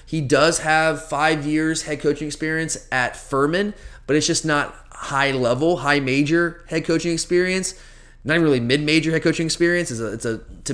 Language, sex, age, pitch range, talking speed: English, male, 30-49, 135-165 Hz, 185 wpm